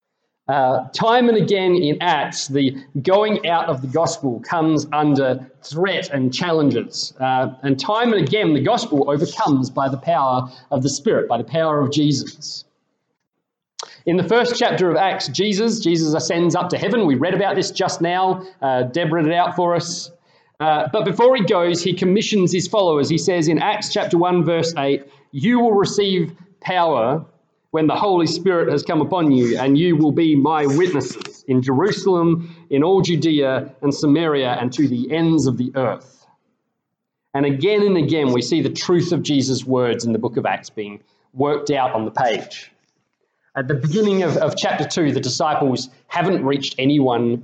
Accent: Australian